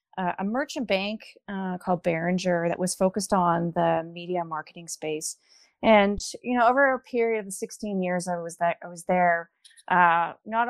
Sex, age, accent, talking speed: female, 30-49, American, 180 wpm